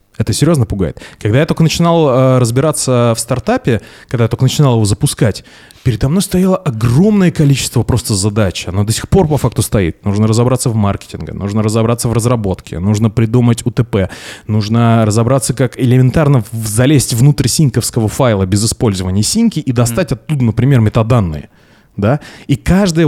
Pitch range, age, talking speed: 110-140 Hz, 20-39, 160 wpm